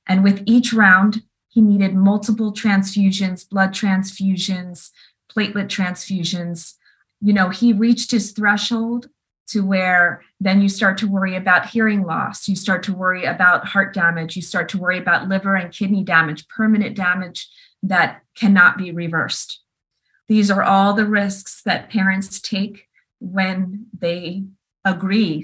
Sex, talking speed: female, 145 wpm